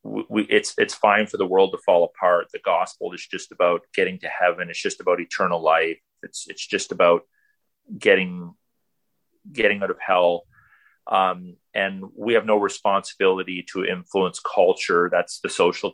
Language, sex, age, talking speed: English, male, 40-59, 165 wpm